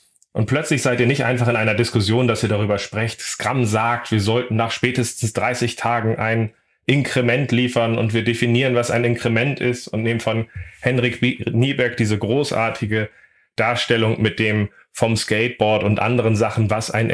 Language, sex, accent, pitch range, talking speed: German, male, German, 105-120 Hz, 170 wpm